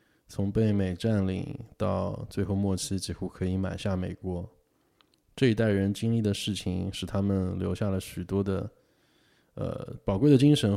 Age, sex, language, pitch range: 20-39, male, Chinese, 95-110 Hz